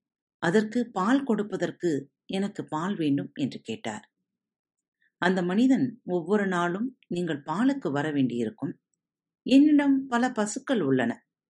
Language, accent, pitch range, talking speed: Tamil, native, 145-235 Hz, 105 wpm